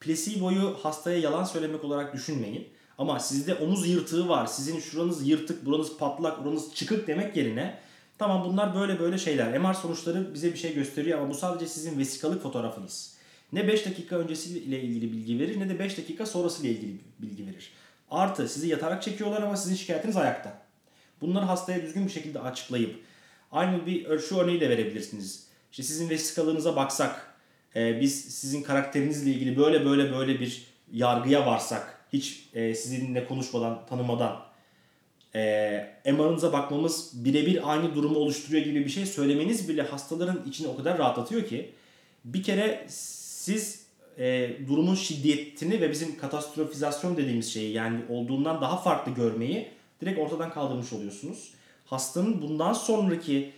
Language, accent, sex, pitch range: Turkish, native, male, 135-175 Hz